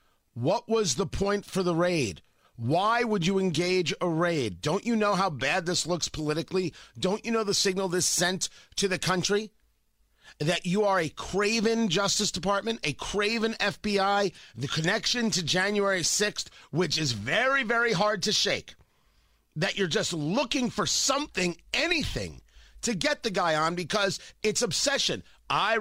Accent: American